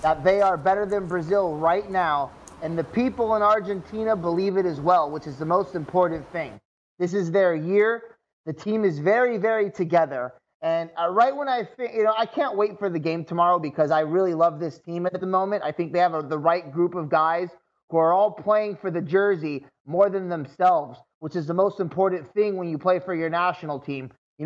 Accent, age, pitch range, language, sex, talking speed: American, 30-49, 170-220 Hz, English, male, 220 wpm